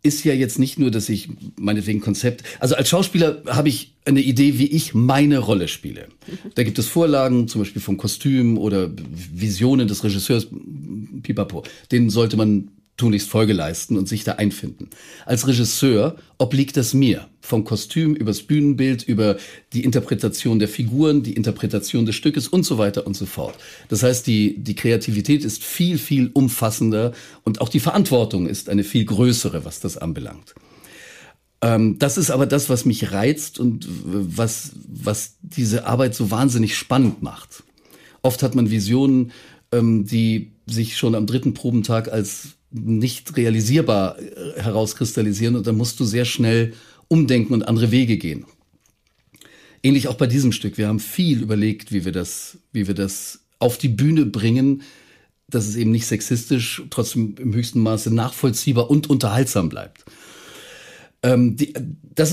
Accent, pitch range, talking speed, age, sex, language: German, 110-135 Hz, 155 wpm, 40-59, male, German